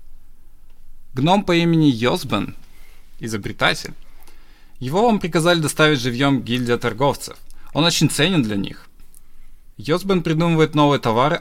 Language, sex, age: Russian, male, 20-39